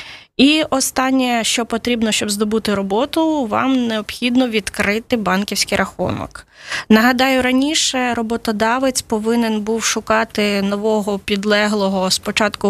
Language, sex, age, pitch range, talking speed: Ukrainian, female, 20-39, 210-250 Hz, 100 wpm